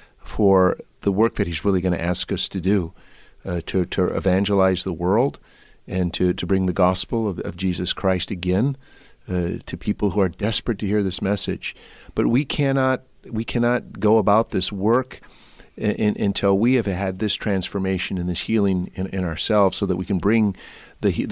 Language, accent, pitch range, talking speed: English, American, 90-105 Hz, 190 wpm